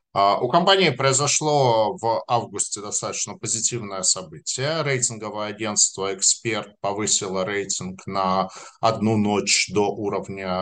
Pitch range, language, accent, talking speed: 105-130 Hz, Russian, native, 105 wpm